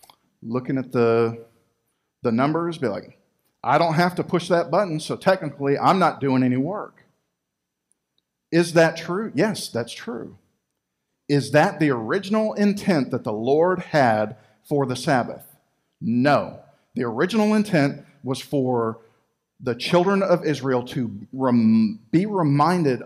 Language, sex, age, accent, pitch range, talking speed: English, male, 50-69, American, 115-165 Hz, 135 wpm